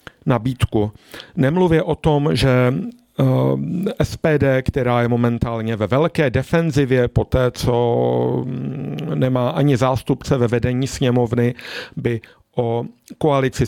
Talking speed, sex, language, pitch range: 105 wpm, male, Czech, 120-145 Hz